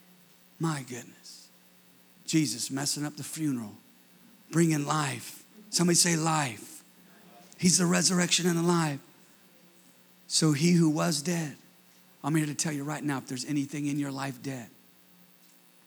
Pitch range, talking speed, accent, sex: 130-170 Hz, 135 wpm, American, male